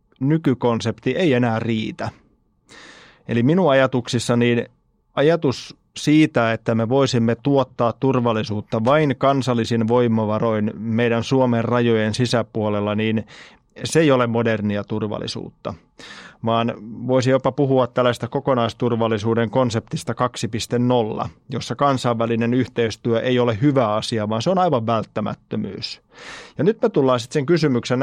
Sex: male